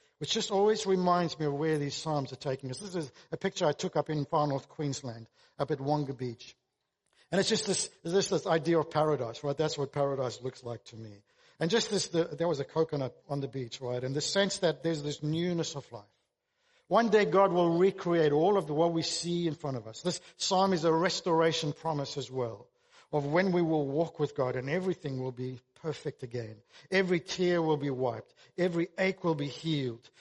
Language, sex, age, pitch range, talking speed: English, male, 50-69, 135-170 Hz, 220 wpm